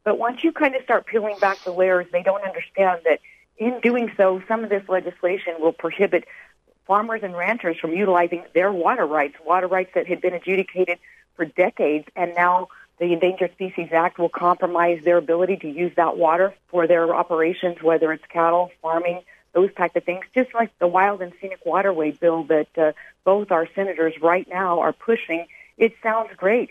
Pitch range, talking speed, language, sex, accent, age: 170-195 Hz, 190 wpm, English, female, American, 50-69